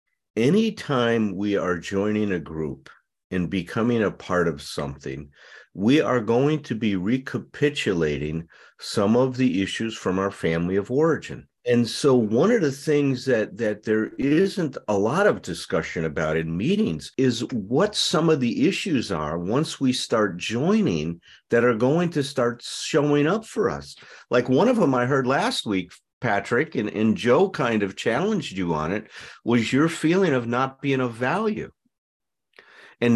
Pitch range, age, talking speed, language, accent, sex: 100-145 Hz, 50-69, 165 wpm, English, American, male